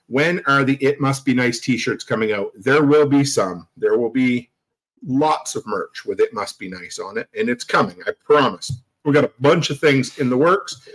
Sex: male